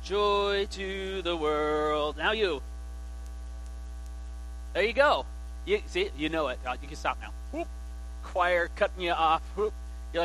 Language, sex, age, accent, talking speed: English, male, 30-49, American, 145 wpm